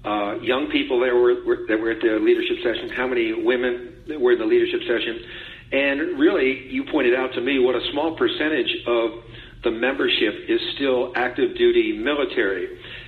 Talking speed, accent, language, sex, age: 180 wpm, American, English, male, 50-69